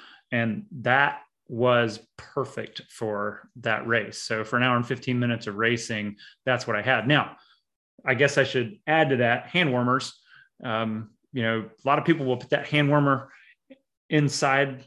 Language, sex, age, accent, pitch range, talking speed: English, male, 30-49, American, 120-140 Hz, 175 wpm